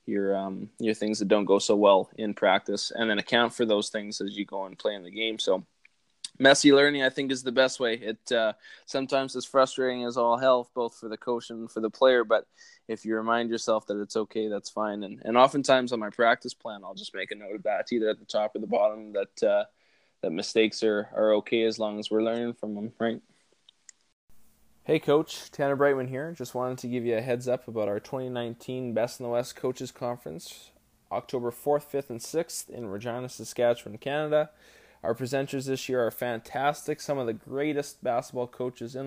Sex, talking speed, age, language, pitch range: male, 215 wpm, 20-39, English, 110-130 Hz